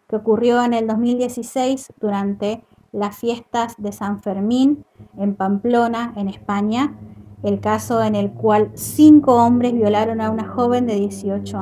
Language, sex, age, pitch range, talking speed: Spanish, female, 20-39, 205-250 Hz, 145 wpm